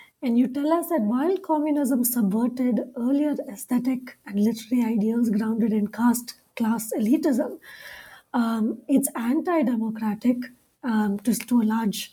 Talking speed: 130 wpm